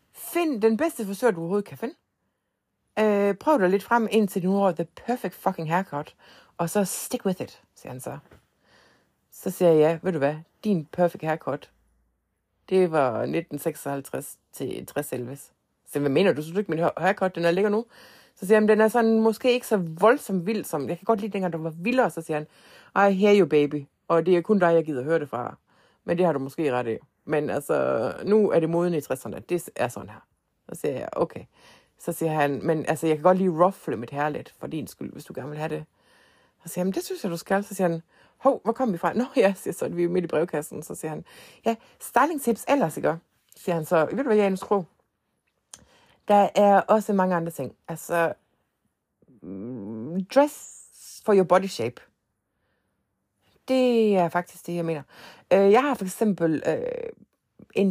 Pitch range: 160-215 Hz